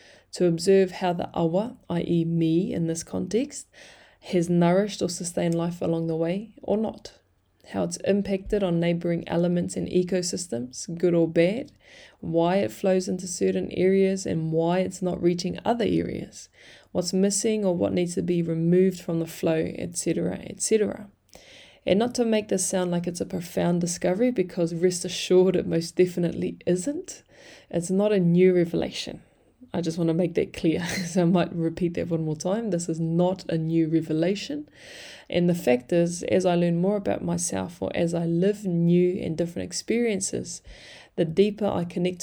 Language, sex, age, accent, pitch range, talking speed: English, female, 20-39, Australian, 170-190 Hz, 175 wpm